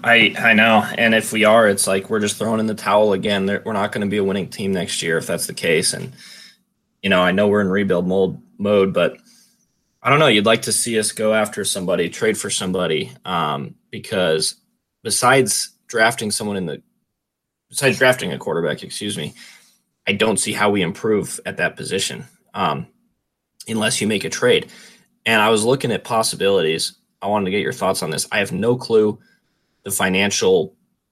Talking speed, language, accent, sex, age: 195 wpm, English, American, male, 20-39